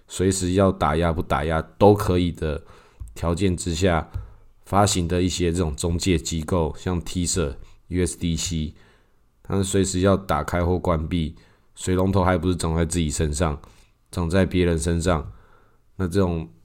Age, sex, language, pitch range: 20-39, male, Chinese, 85-100 Hz